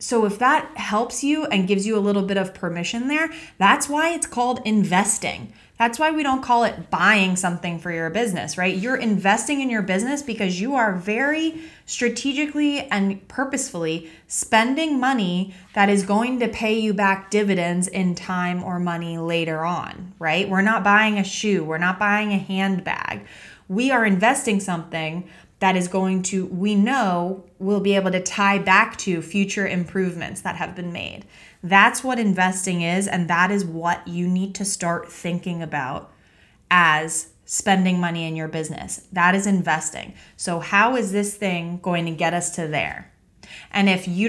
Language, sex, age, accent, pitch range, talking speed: English, female, 20-39, American, 180-225 Hz, 175 wpm